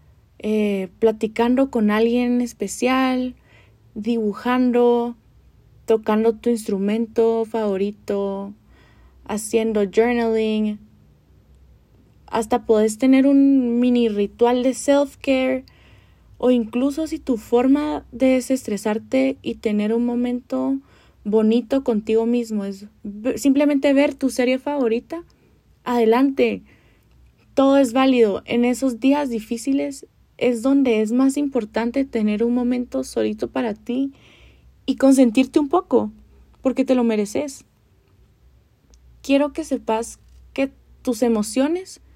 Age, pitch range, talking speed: 20-39, 215-260 Hz, 105 wpm